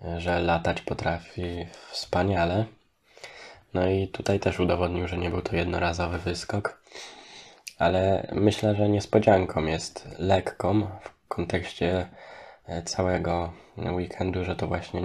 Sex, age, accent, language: male, 20-39, native, Polish